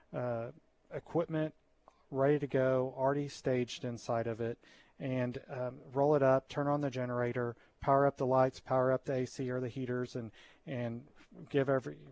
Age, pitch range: 30-49, 120-130 Hz